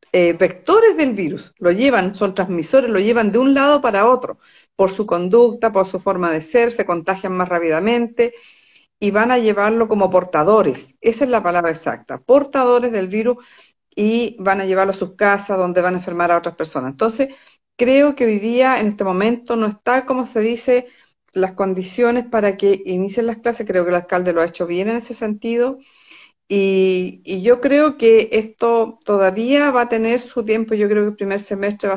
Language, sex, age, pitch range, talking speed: Spanish, female, 50-69, 185-240 Hz, 195 wpm